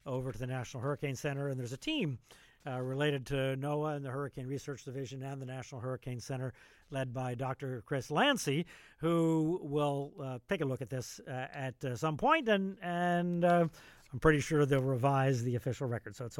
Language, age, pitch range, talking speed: English, 50-69, 125-155 Hz, 200 wpm